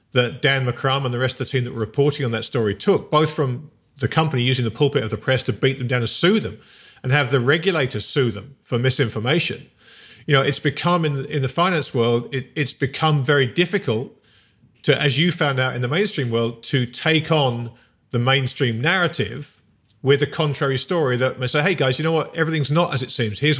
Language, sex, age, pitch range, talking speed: English, male, 40-59, 125-155 Hz, 220 wpm